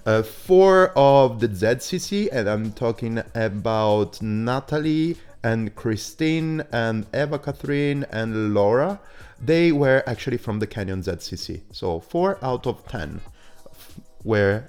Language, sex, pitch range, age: English, male, 95-125 Hz, 30-49